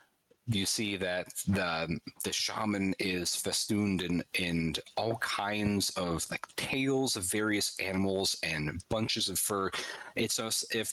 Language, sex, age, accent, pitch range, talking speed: English, male, 30-49, American, 90-110 Hz, 135 wpm